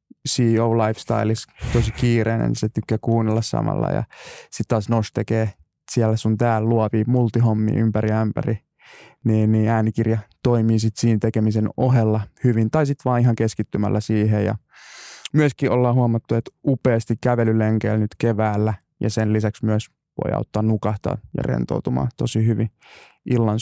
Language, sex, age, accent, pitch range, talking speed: Finnish, male, 20-39, native, 110-125 Hz, 140 wpm